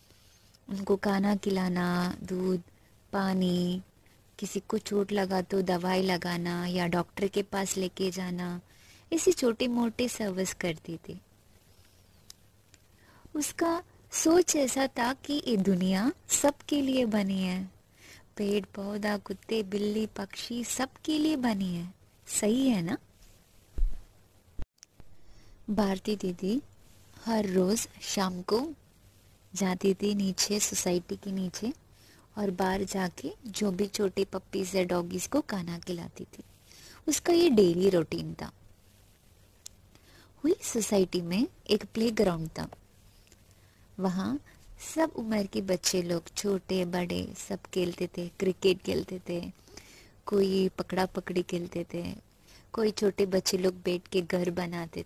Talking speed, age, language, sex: 120 wpm, 20-39, Hindi, female